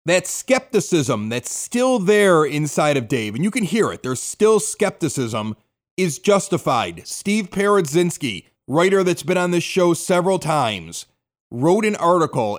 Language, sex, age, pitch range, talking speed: English, male, 30-49, 140-185 Hz, 150 wpm